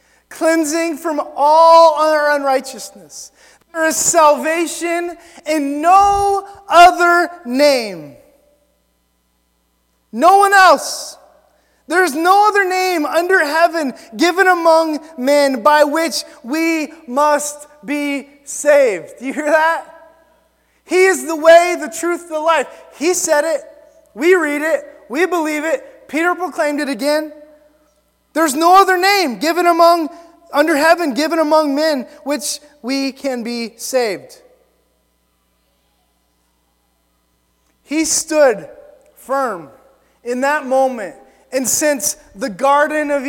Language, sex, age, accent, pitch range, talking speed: English, male, 20-39, American, 275-330 Hz, 115 wpm